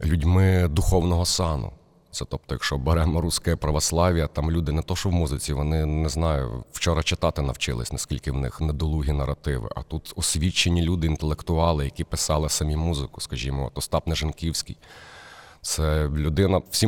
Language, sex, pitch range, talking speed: Ukrainian, male, 75-85 Hz, 150 wpm